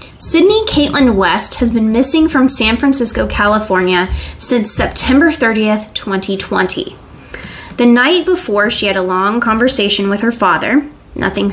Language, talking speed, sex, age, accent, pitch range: English, 135 wpm, female, 20-39, American, 185-250 Hz